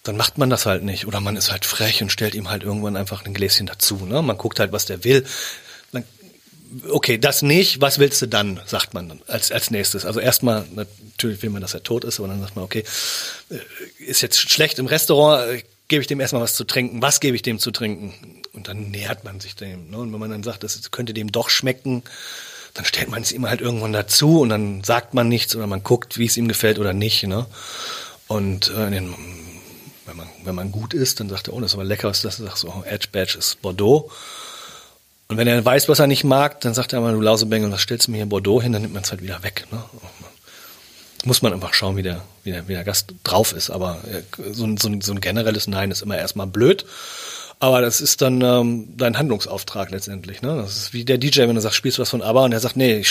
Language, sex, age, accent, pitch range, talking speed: German, male, 40-59, German, 100-125 Hz, 245 wpm